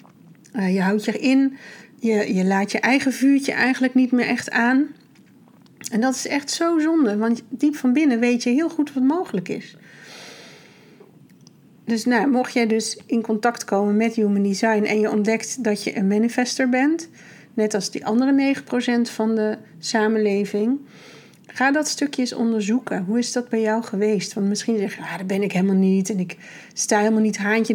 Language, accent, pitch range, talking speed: Dutch, Dutch, 210-245 Hz, 180 wpm